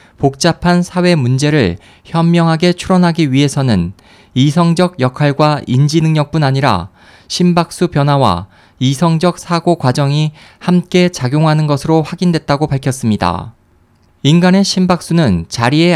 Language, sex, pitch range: Korean, male, 120-170 Hz